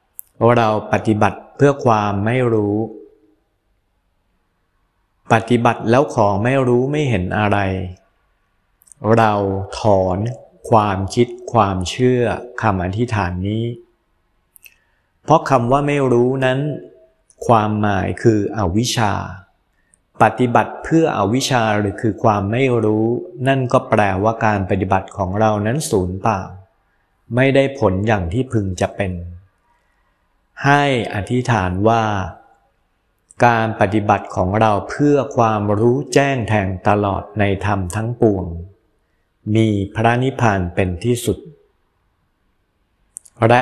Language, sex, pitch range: Thai, male, 95-120 Hz